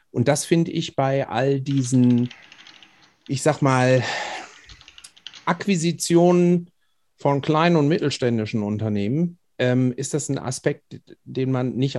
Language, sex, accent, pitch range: German, male, German, 115-140 Hz